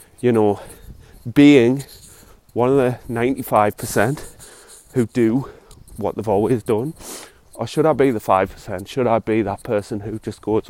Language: English